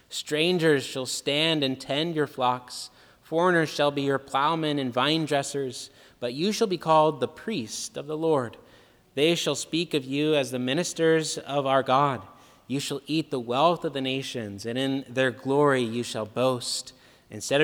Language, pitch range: English, 120-150 Hz